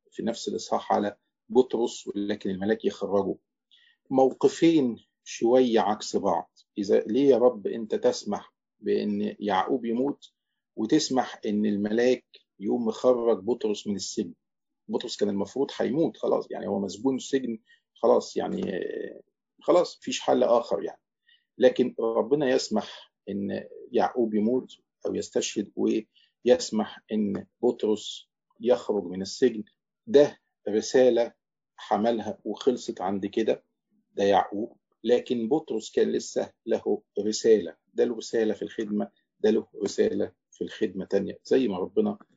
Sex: male